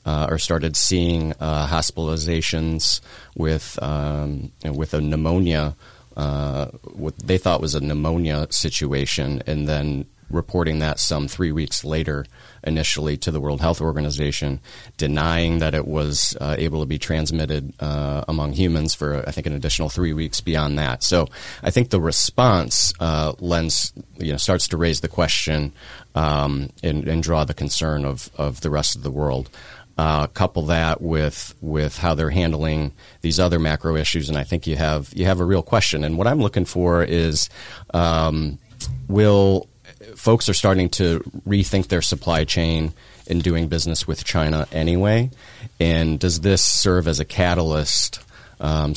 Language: English